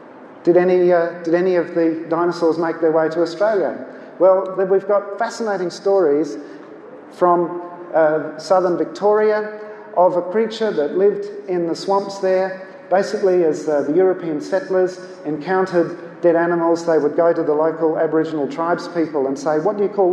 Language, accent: English, Australian